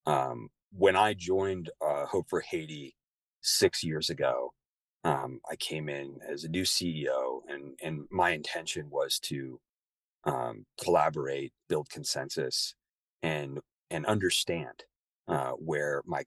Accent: American